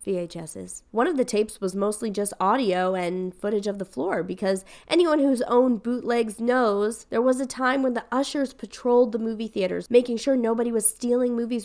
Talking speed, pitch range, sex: 190 wpm, 190-245 Hz, female